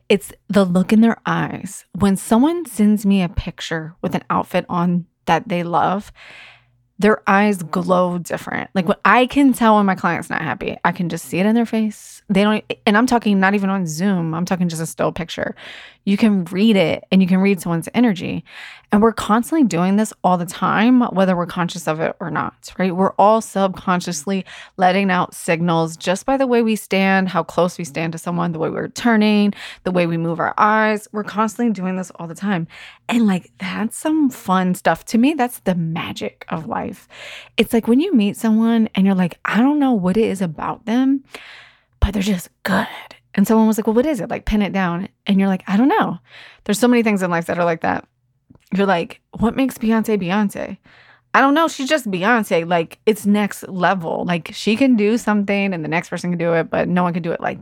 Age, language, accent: 20-39, English, American